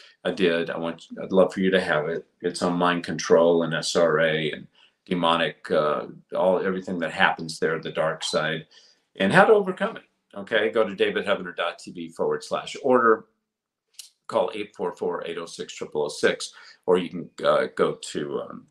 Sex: male